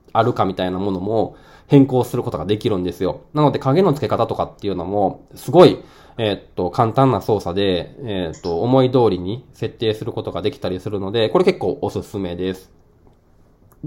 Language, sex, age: Japanese, male, 20-39